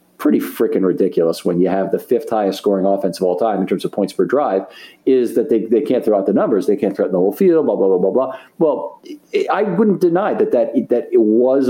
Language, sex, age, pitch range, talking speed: English, male, 50-69, 100-160 Hz, 250 wpm